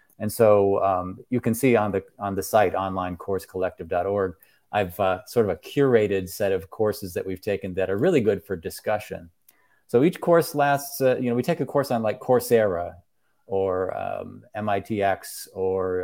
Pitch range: 95-115 Hz